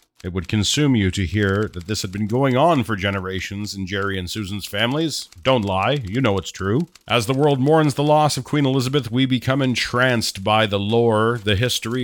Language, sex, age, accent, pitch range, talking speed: English, male, 40-59, American, 110-135 Hz, 210 wpm